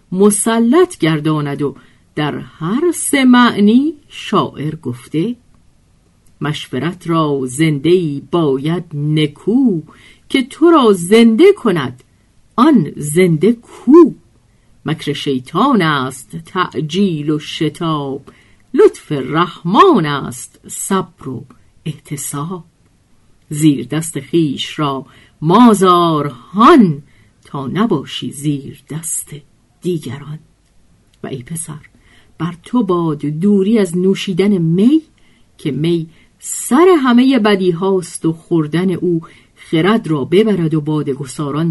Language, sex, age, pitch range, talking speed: Persian, female, 50-69, 145-195 Hz, 100 wpm